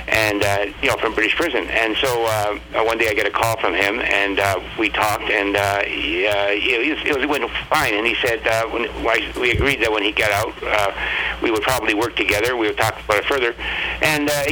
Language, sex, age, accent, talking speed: English, male, 60-79, American, 220 wpm